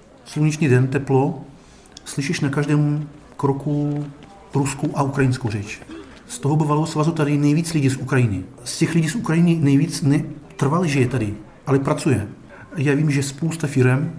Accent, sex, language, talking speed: native, male, Czech, 155 wpm